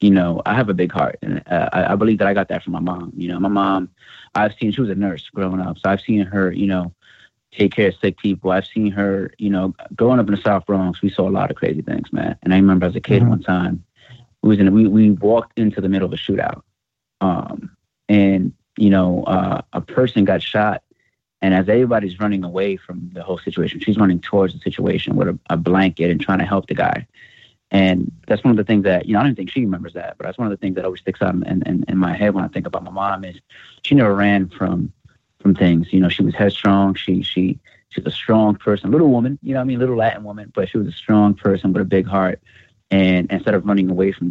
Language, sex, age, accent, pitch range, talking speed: English, male, 30-49, American, 95-105 Hz, 255 wpm